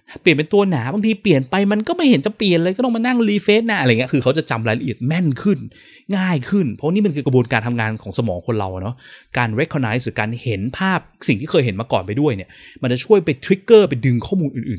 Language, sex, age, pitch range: Thai, male, 20-39, 115-165 Hz